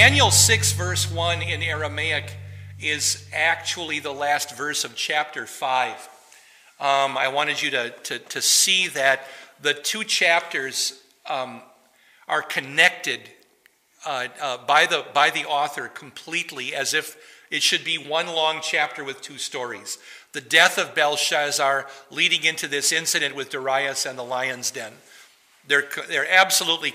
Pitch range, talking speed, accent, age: 130-155 Hz, 145 wpm, American, 50-69